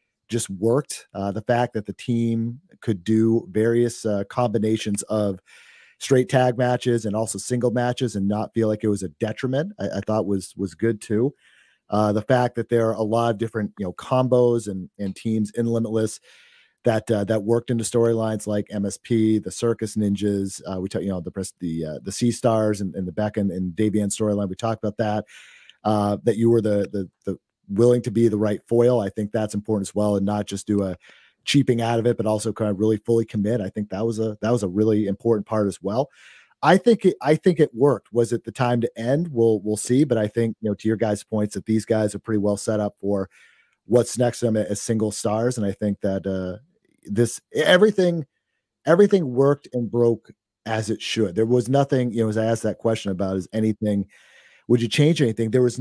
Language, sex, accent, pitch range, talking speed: English, male, American, 105-120 Hz, 225 wpm